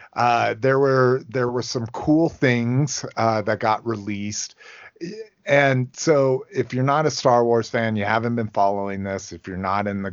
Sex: male